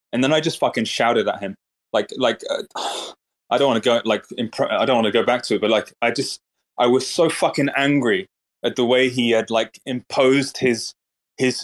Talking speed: 220 wpm